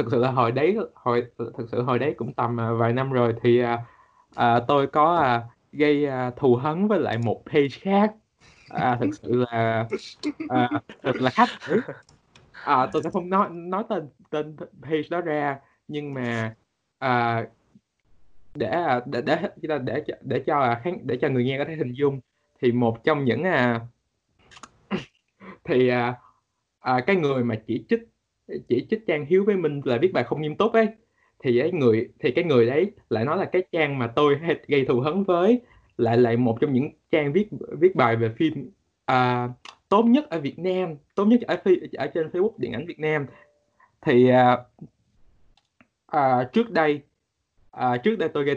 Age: 20-39